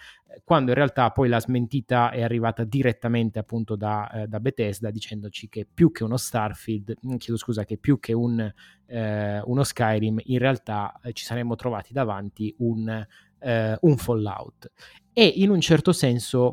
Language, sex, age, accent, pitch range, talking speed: Italian, male, 20-39, native, 115-135 Hz, 155 wpm